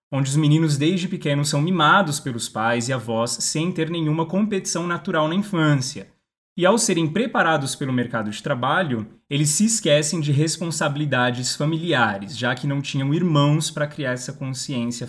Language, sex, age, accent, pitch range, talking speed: Portuguese, male, 20-39, Brazilian, 125-165 Hz, 165 wpm